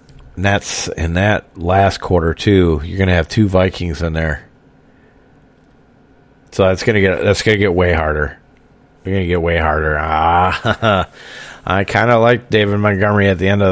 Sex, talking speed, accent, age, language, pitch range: male, 170 wpm, American, 40-59, English, 85-105 Hz